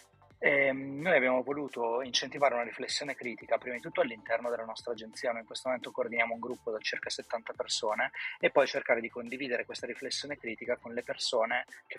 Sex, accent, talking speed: male, native, 190 wpm